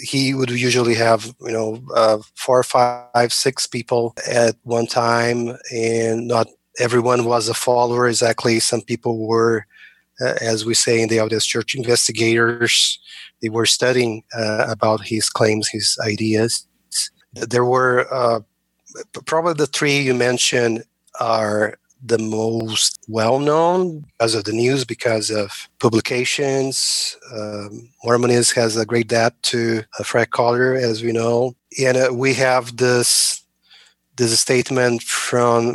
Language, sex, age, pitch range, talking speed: English, male, 30-49, 110-125 Hz, 140 wpm